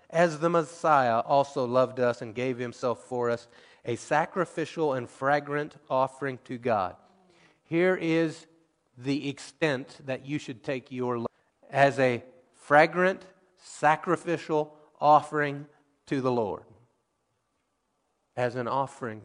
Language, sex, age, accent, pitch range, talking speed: English, male, 30-49, American, 120-155 Hz, 120 wpm